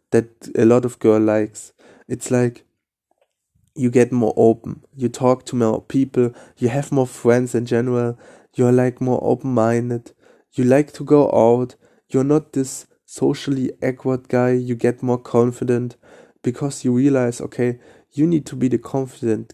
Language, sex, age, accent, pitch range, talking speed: English, male, 20-39, German, 120-130 Hz, 165 wpm